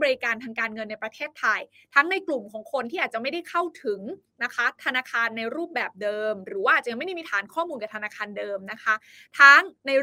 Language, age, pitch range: Thai, 20-39, 220-295 Hz